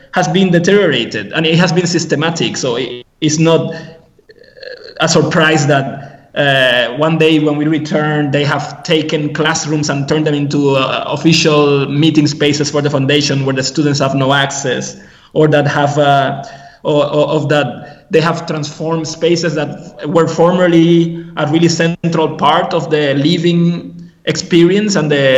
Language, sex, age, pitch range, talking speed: English, male, 20-39, 140-165 Hz, 155 wpm